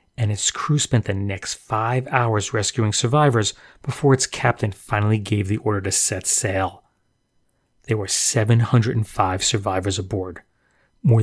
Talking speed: 140 wpm